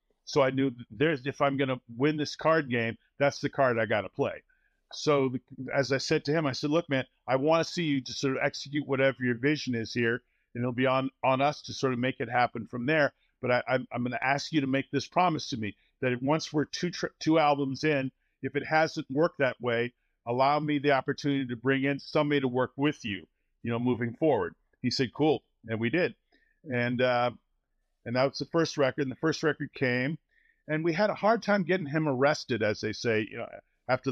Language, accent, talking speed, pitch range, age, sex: English, American, 230 wpm, 125-150 Hz, 50-69, male